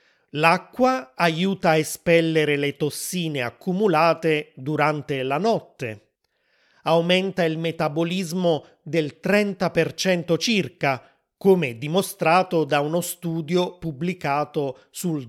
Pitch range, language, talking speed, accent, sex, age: 150-185 Hz, Italian, 90 wpm, native, male, 30-49